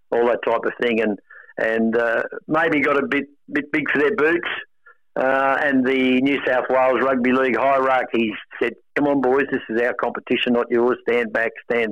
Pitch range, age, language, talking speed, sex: 120-145 Hz, 60-79, English, 195 wpm, male